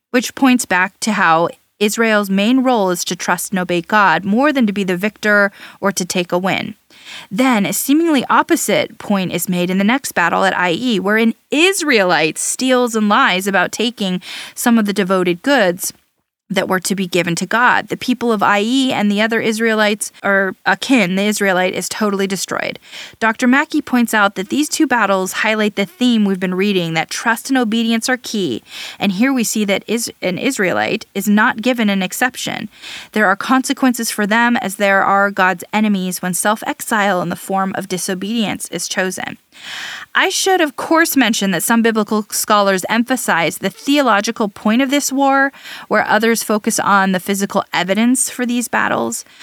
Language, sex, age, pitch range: English, female, 20-39, 195-245 Hz